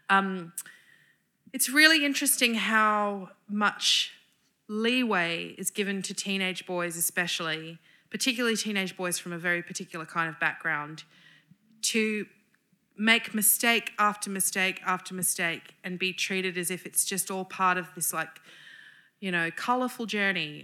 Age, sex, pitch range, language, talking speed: 30-49, female, 165-200 Hz, English, 135 wpm